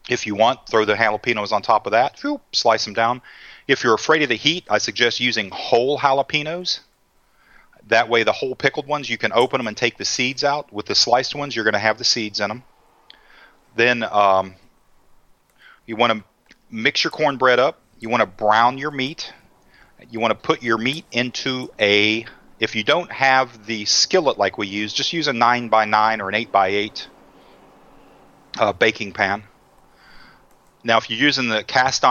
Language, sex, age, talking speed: English, male, 40-59, 185 wpm